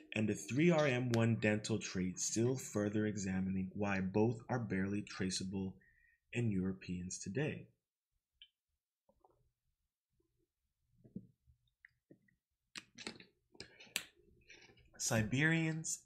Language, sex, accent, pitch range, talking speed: English, male, American, 95-125 Hz, 65 wpm